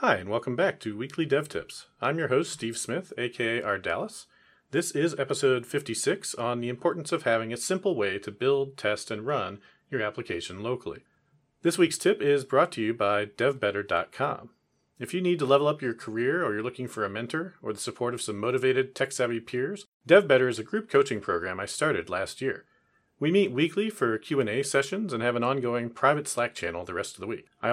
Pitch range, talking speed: 115-145 Hz, 205 wpm